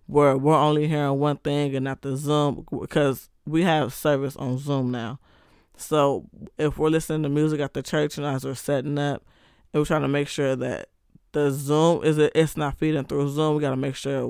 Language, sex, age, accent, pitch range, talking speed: English, male, 20-39, American, 140-160 Hz, 225 wpm